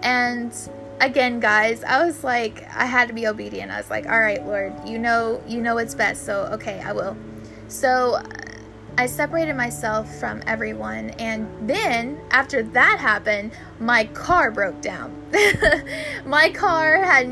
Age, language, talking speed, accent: 10-29, English, 155 wpm, American